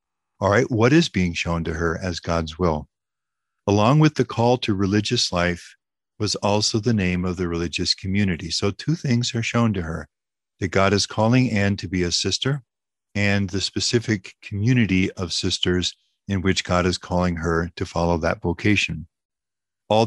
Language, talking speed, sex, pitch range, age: English, 175 wpm, male, 90-115 Hz, 50-69